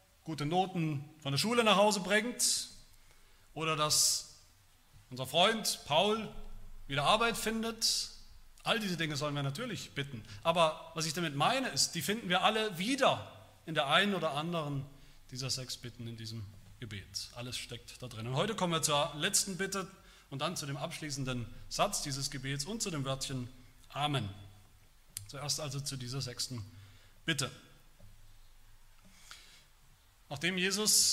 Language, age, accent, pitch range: German, 30-49, German, 120-195 Hz